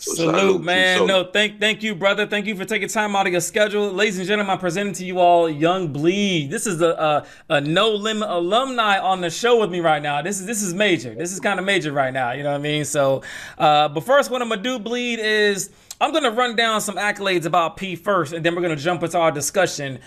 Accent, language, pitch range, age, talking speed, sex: American, English, 160-205 Hz, 30-49, 265 wpm, male